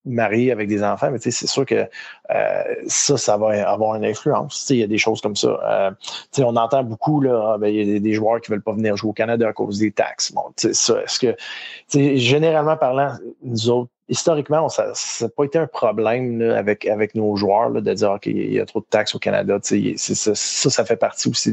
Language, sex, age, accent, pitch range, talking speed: French, male, 30-49, Canadian, 110-135 Hz, 245 wpm